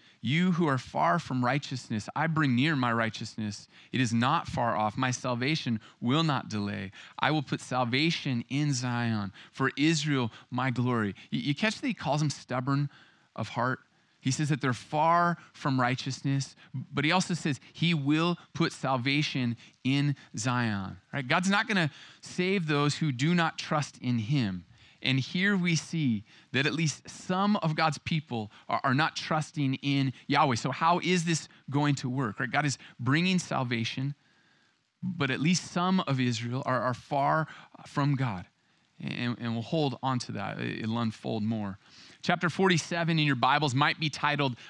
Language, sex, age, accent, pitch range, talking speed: English, male, 30-49, American, 120-155 Hz, 170 wpm